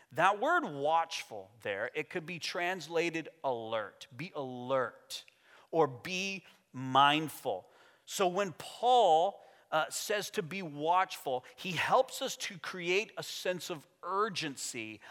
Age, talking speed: 30-49, 125 wpm